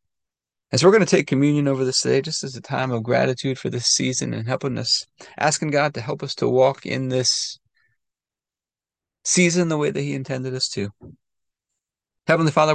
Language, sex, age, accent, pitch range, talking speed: English, male, 30-49, American, 115-140 Hz, 195 wpm